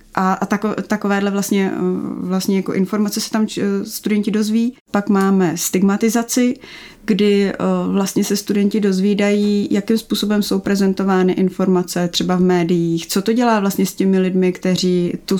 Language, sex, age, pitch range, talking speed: Czech, female, 30-49, 185-200 Hz, 135 wpm